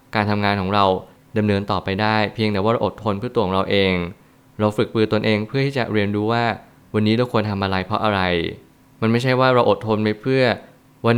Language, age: Thai, 20-39